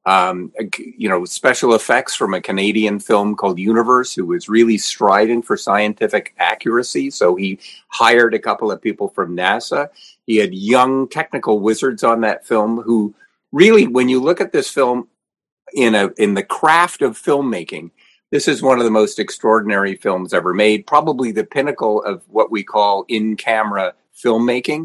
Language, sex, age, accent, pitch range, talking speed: English, male, 50-69, American, 105-170 Hz, 170 wpm